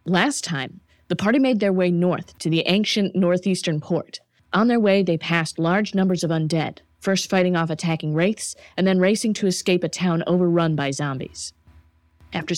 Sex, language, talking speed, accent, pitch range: female, English, 180 wpm, American, 155-185 Hz